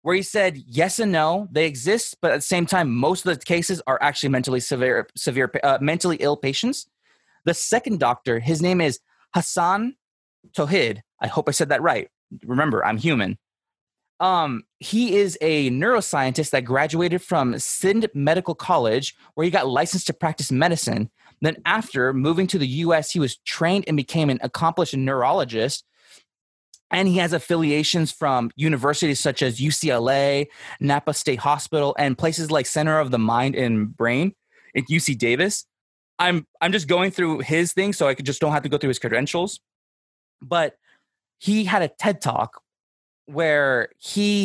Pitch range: 135-180 Hz